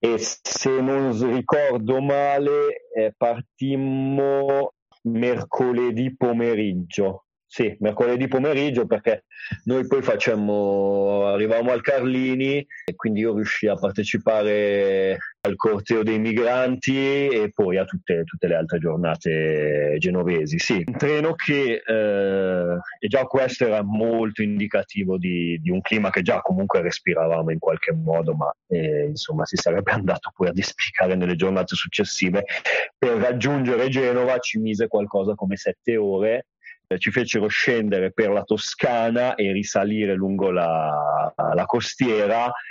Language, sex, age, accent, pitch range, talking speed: Italian, male, 40-59, native, 100-135 Hz, 130 wpm